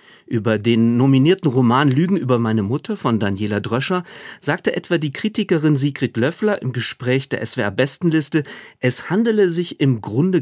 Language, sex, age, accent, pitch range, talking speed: German, male, 40-59, German, 115-155 Hz, 150 wpm